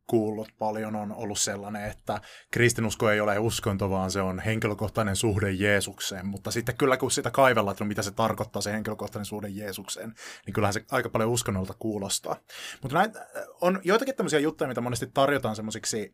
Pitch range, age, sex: 105-125 Hz, 20-39, male